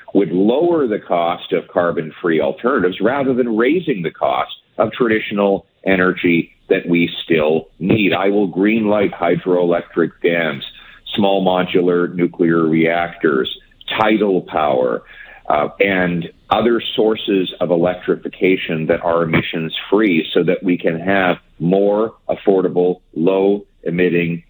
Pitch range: 85-95 Hz